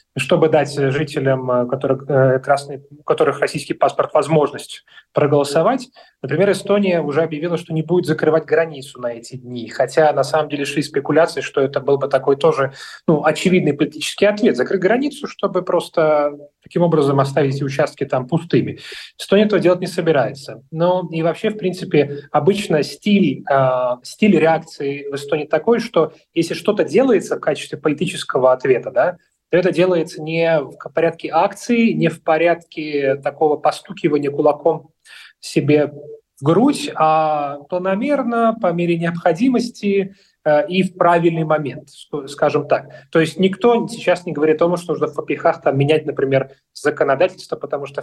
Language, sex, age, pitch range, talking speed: Russian, male, 30-49, 145-180 Hz, 150 wpm